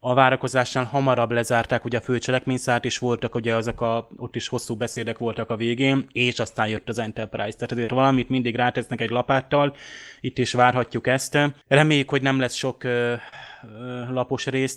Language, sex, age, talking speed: Hungarian, male, 20-39, 165 wpm